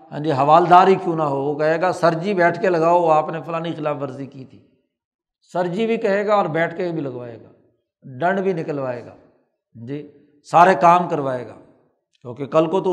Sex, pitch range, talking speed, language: male, 150-180 Hz, 215 wpm, Urdu